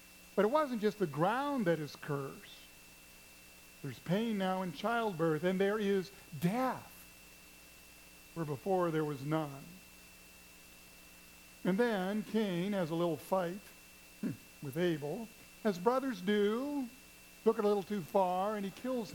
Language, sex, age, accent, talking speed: English, male, 50-69, American, 140 wpm